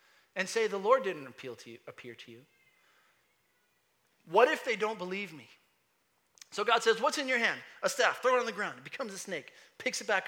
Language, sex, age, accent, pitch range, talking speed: English, male, 30-49, American, 185-280 Hz, 220 wpm